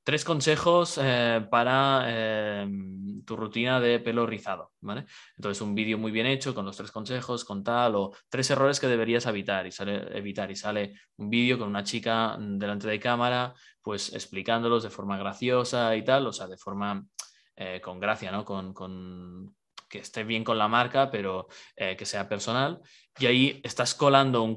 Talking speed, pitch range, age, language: 175 wpm, 100-125 Hz, 20-39, Spanish